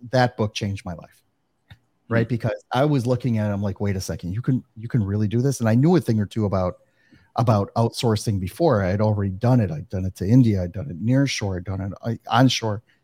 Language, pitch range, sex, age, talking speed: English, 105-125 Hz, male, 30-49, 250 wpm